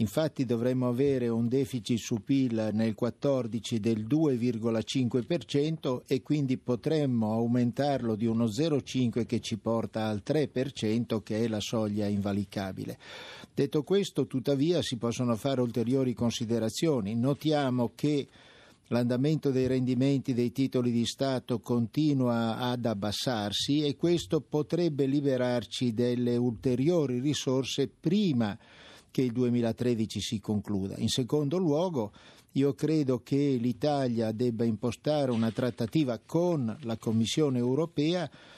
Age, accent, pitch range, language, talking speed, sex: 60-79, native, 115-145 Hz, Italian, 120 wpm, male